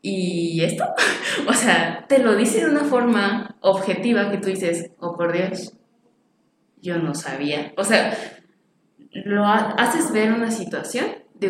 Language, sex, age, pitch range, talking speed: Spanish, female, 20-39, 180-235 Hz, 145 wpm